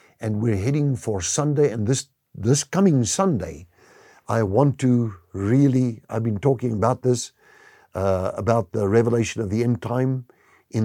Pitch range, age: 110-150 Hz, 50-69